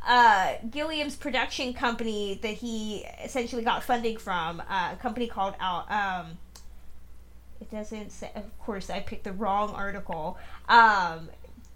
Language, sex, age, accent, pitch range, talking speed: English, female, 20-39, American, 215-255 Hz, 140 wpm